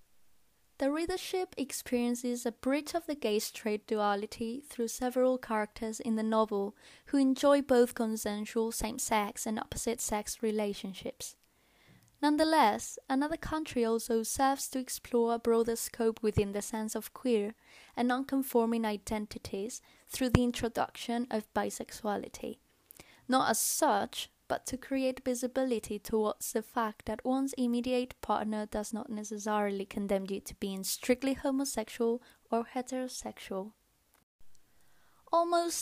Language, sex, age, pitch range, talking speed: English, female, 10-29, 215-255 Hz, 125 wpm